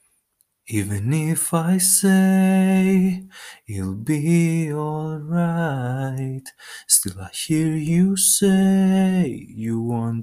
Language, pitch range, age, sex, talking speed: Greek, 120-170 Hz, 20-39, male, 90 wpm